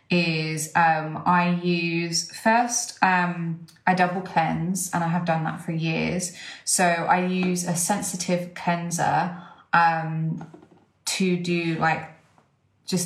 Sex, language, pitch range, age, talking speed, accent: female, English, 160-180 Hz, 20-39, 125 wpm, British